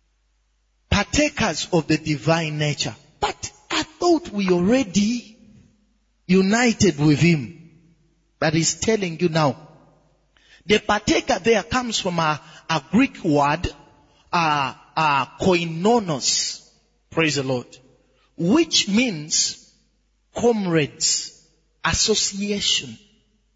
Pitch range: 160-230 Hz